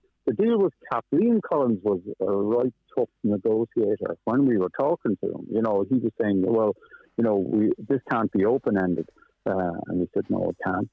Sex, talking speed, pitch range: male, 200 wpm, 95-120 Hz